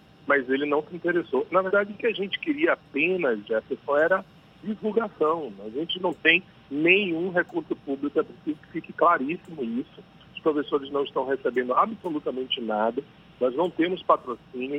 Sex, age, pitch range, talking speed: male, 40-59, 140-200 Hz, 160 wpm